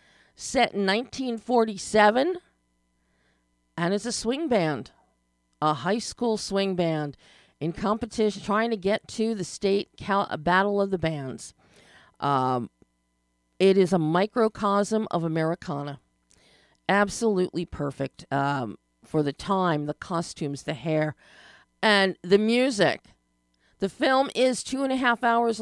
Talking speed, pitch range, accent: 125 wpm, 140-205 Hz, American